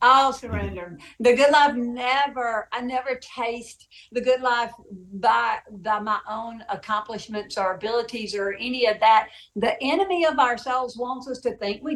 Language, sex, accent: English, female, American